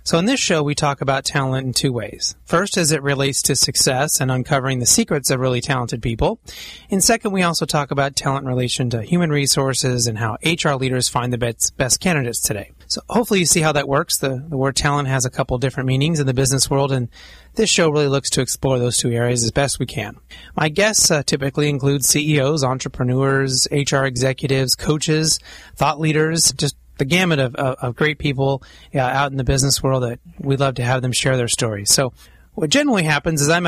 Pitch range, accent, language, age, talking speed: 125-150 Hz, American, English, 30-49, 215 wpm